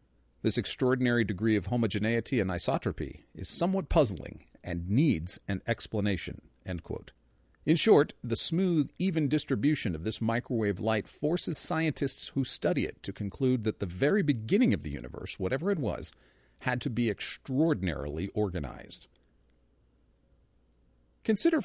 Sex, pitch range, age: male, 90-130 Hz, 40-59